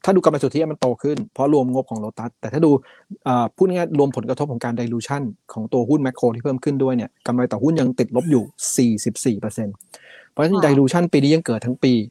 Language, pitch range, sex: Thai, 115-140 Hz, male